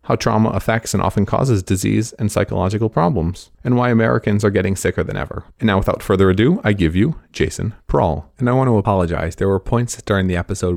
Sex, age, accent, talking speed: male, 30-49, American, 215 wpm